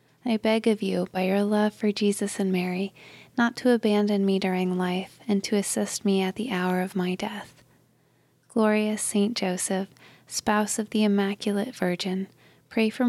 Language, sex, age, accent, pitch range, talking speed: English, female, 20-39, American, 185-210 Hz, 170 wpm